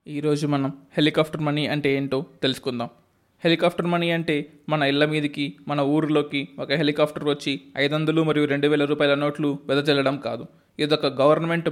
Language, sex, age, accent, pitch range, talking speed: Telugu, male, 20-39, native, 145-175 Hz, 150 wpm